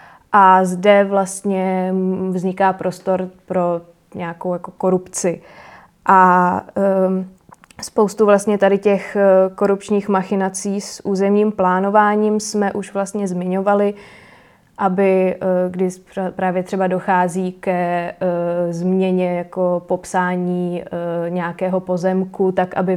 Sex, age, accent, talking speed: female, 20-39, native, 90 wpm